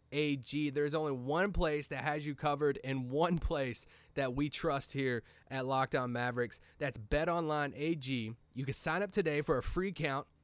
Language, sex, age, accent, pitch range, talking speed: English, male, 30-49, American, 125-170 Hz, 180 wpm